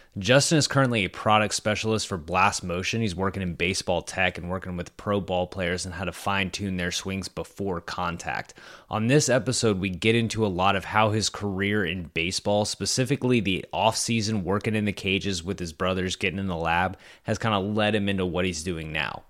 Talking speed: 210 wpm